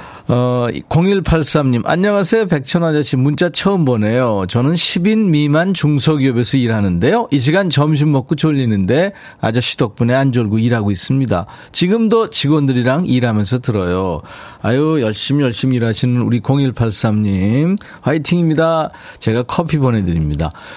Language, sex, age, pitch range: Korean, male, 40-59, 110-165 Hz